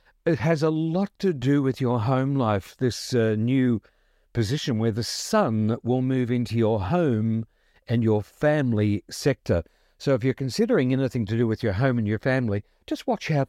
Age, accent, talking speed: 60-79, British, 185 wpm